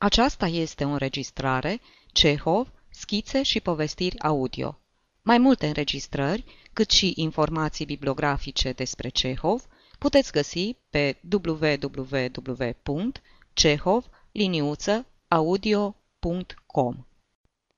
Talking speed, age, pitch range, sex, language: 75 wpm, 30-49, 140-205 Hz, female, Romanian